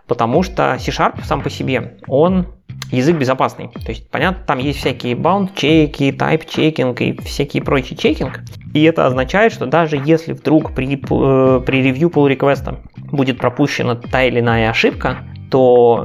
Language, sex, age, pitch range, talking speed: Russian, male, 20-39, 125-155 Hz, 150 wpm